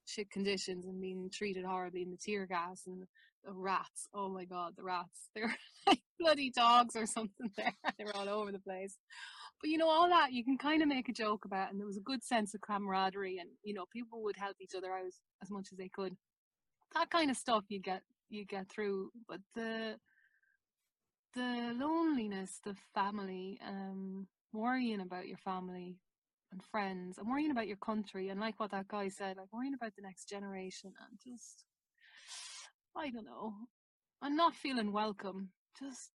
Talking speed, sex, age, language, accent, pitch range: 190 wpm, female, 20-39, English, Irish, 190-230 Hz